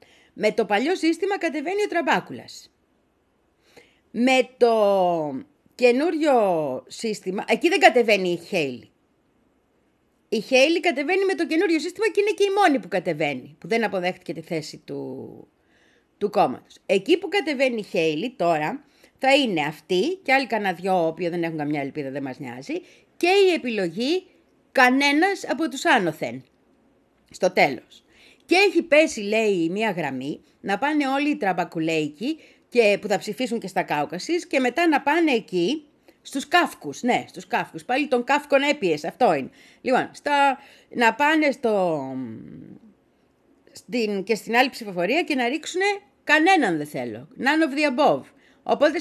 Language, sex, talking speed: Greek, female, 150 wpm